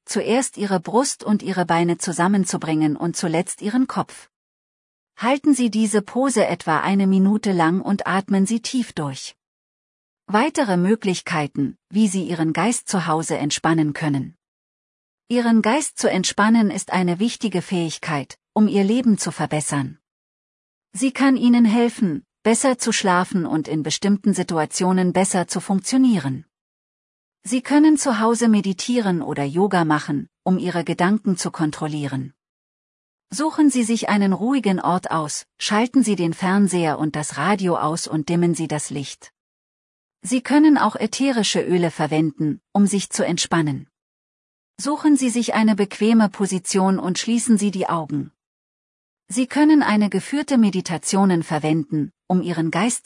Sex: female